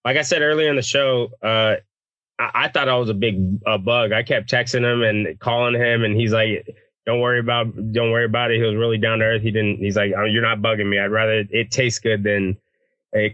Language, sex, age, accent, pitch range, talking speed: English, male, 20-39, American, 110-130 Hz, 255 wpm